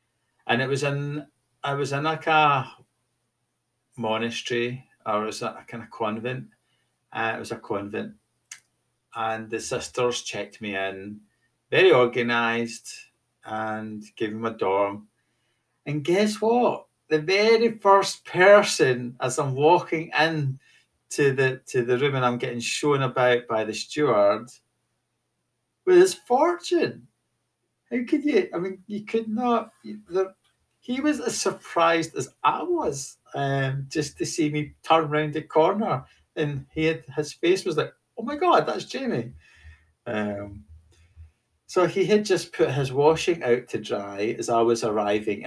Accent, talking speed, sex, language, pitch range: British, 150 wpm, male, English, 115-170 Hz